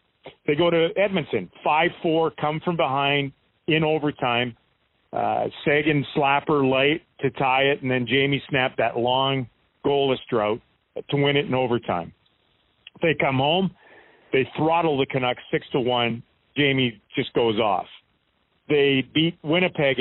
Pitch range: 120-155 Hz